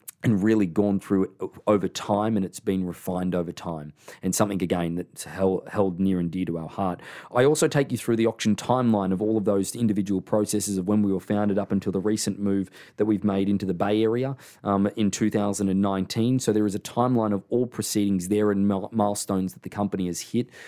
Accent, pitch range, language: Australian, 95-110 Hz, English